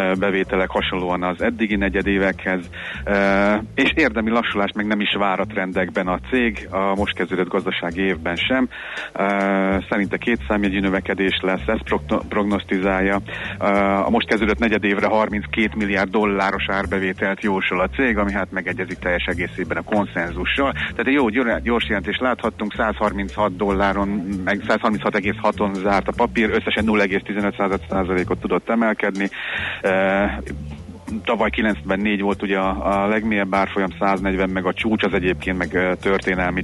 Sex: male